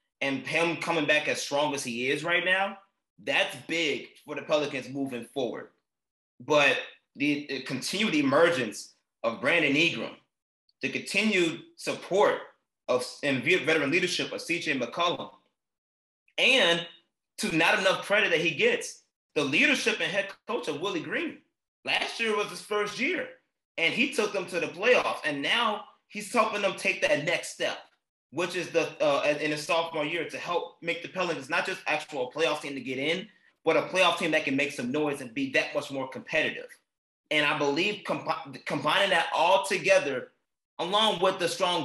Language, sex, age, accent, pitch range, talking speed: English, male, 30-49, American, 145-195 Hz, 175 wpm